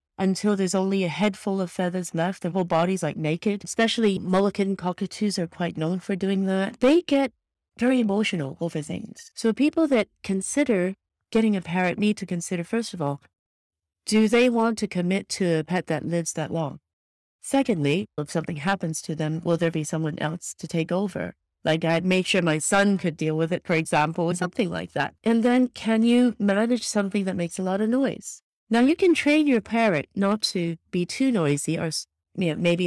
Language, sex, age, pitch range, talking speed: English, female, 40-59, 165-215 Hz, 200 wpm